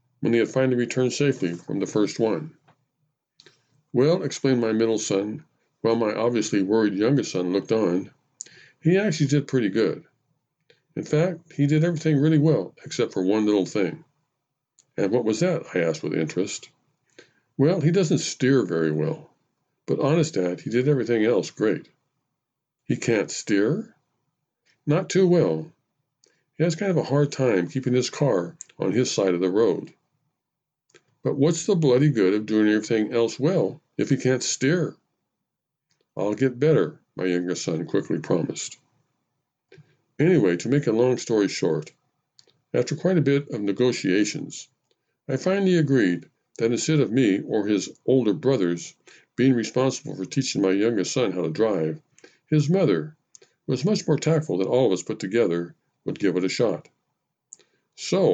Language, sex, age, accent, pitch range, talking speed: English, male, 50-69, American, 110-155 Hz, 165 wpm